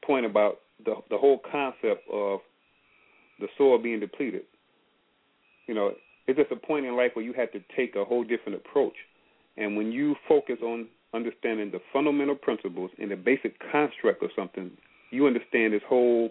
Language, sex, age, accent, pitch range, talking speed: English, male, 40-59, American, 115-155 Hz, 175 wpm